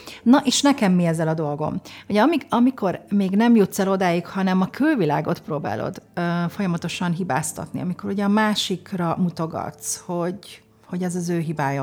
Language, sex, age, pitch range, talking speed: Hungarian, female, 40-59, 170-215 Hz, 160 wpm